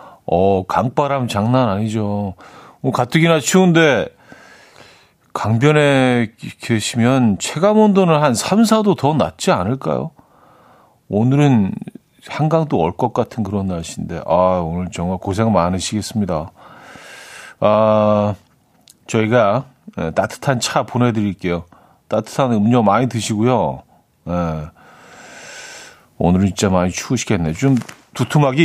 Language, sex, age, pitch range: Korean, male, 40-59, 100-140 Hz